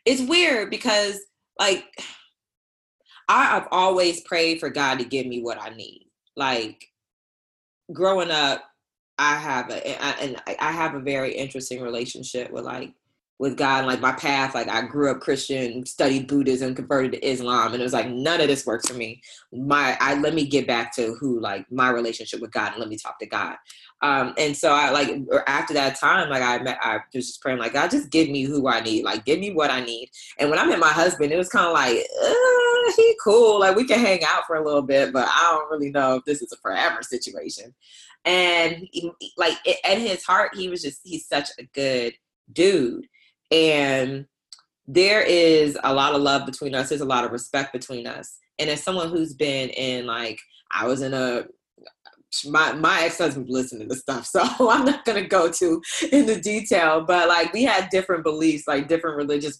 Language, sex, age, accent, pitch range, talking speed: English, female, 20-39, American, 130-170 Hz, 205 wpm